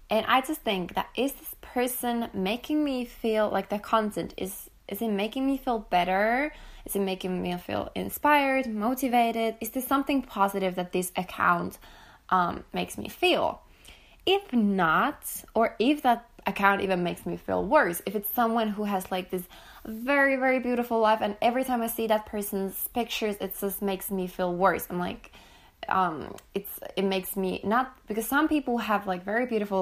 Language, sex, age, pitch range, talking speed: English, female, 20-39, 185-245 Hz, 180 wpm